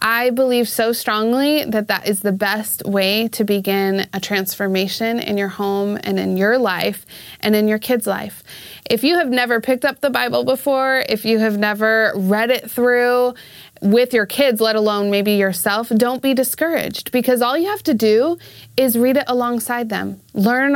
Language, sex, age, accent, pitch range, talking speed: English, female, 20-39, American, 205-255 Hz, 185 wpm